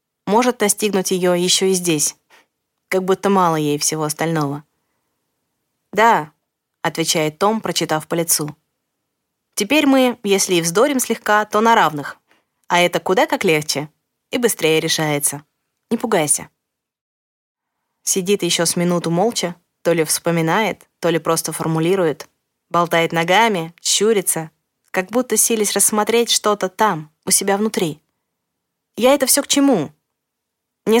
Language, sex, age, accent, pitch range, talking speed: Russian, female, 20-39, native, 160-210 Hz, 130 wpm